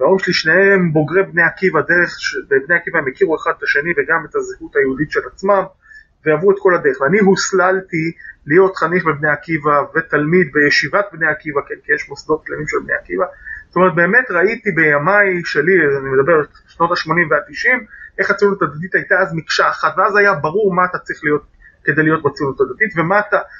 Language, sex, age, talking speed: Hebrew, male, 30-49, 190 wpm